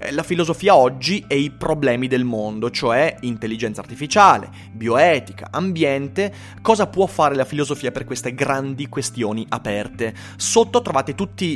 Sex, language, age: male, Italian, 30-49